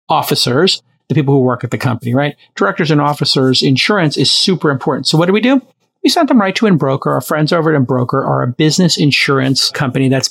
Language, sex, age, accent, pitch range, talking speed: English, male, 40-59, American, 140-180 Hz, 220 wpm